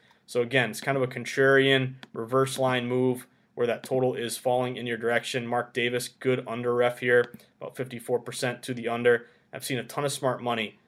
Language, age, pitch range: English, 20-39, 120-135 Hz